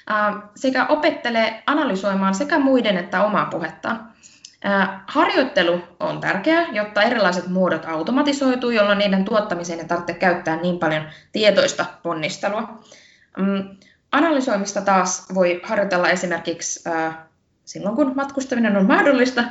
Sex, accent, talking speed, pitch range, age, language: female, native, 105 wpm, 180-260 Hz, 20-39, Finnish